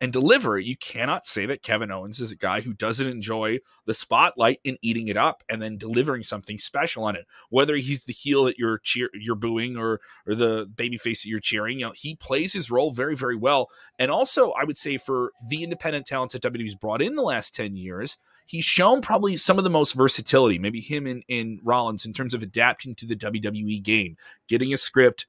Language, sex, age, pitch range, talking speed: English, male, 30-49, 115-145 Hz, 220 wpm